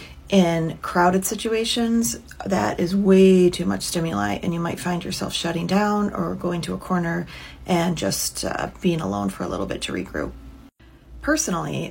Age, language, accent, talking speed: 30-49, English, American, 165 wpm